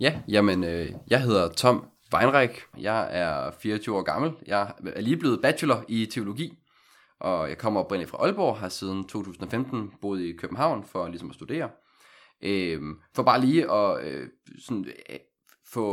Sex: male